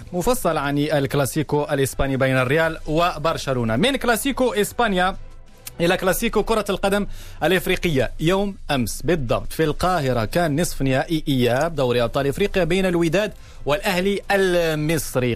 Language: Arabic